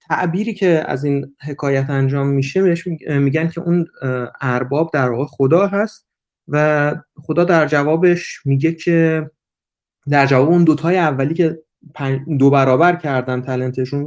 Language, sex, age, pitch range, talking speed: Persian, male, 30-49, 140-185 Hz, 130 wpm